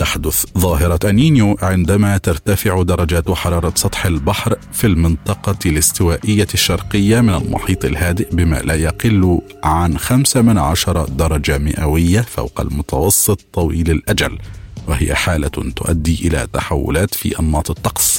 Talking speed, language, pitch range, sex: 120 wpm, Arabic, 80-105 Hz, male